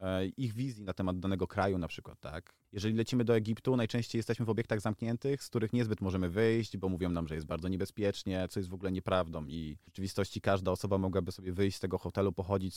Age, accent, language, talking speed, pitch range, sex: 30-49, native, Polish, 220 wpm, 95-115 Hz, male